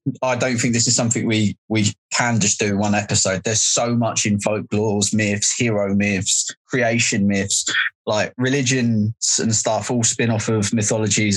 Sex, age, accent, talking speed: male, 20-39, British, 170 wpm